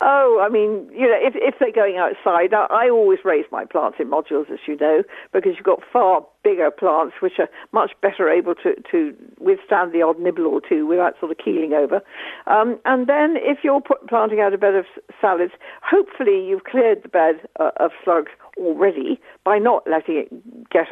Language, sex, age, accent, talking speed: English, female, 60-79, British, 200 wpm